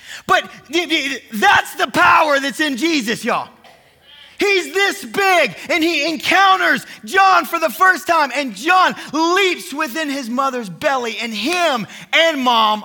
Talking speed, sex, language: 140 wpm, male, English